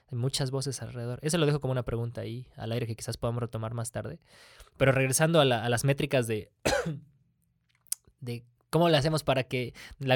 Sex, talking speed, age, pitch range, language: male, 200 wpm, 20-39, 115-145 Hz, Spanish